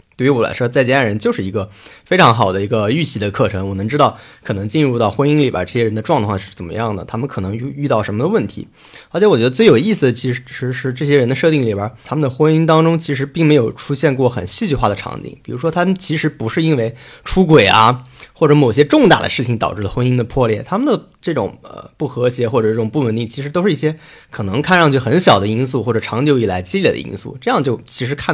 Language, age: Chinese, 30-49